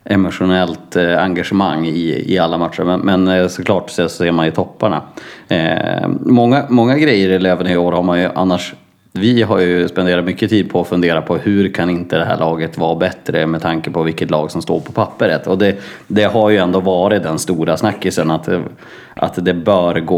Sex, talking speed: male, 200 wpm